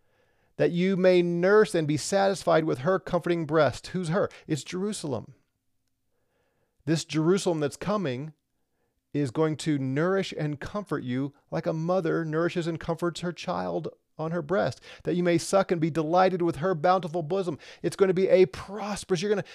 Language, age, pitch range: English, 40-59, 125-180 Hz